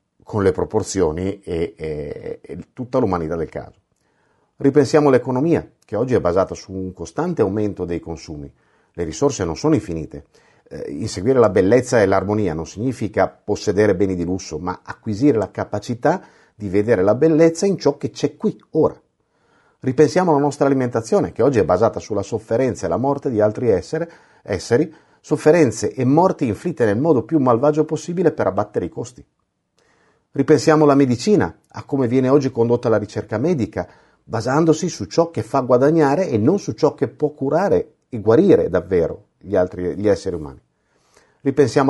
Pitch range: 105-150 Hz